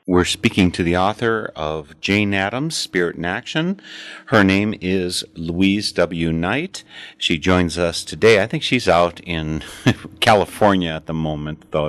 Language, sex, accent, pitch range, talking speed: English, male, American, 80-105 Hz, 155 wpm